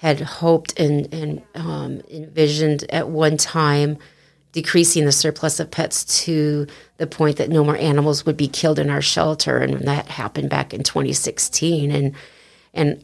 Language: English